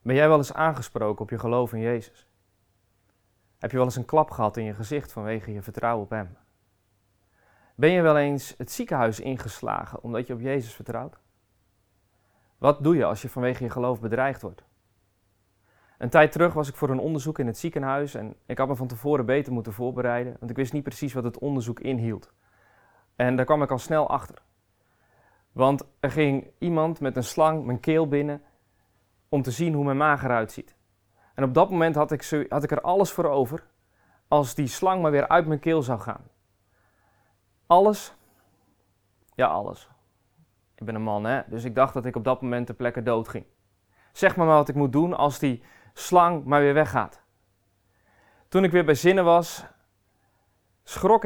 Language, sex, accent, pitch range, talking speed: Dutch, male, Dutch, 105-150 Hz, 190 wpm